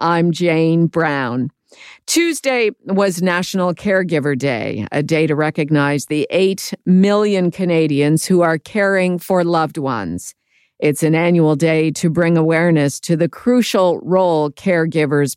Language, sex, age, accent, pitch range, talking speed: English, female, 50-69, American, 150-185 Hz, 135 wpm